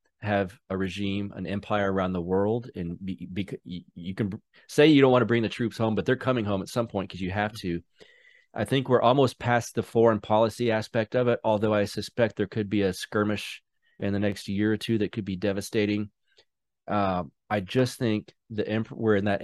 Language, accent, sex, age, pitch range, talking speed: English, American, male, 30-49, 95-110 Hz, 220 wpm